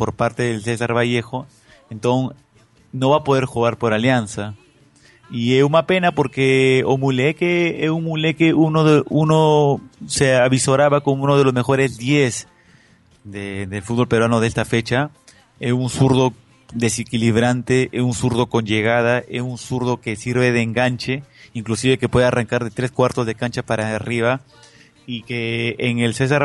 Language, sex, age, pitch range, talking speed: Portuguese, male, 30-49, 115-135 Hz, 160 wpm